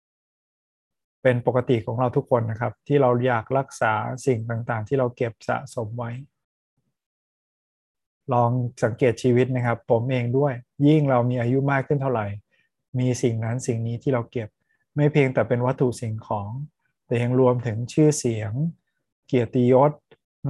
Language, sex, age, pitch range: Thai, male, 20-39, 115-135 Hz